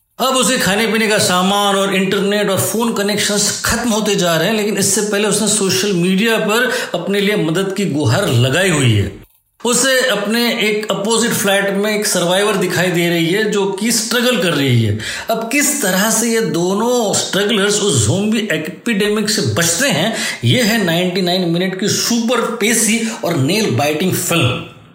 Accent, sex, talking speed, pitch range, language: native, male, 175 wpm, 175-230 Hz, Hindi